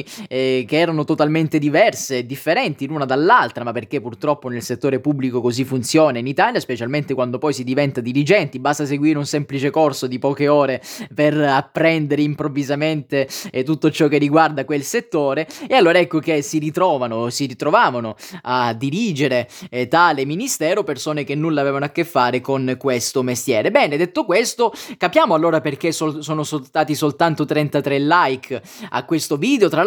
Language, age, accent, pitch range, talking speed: Italian, 20-39, native, 135-170 Hz, 160 wpm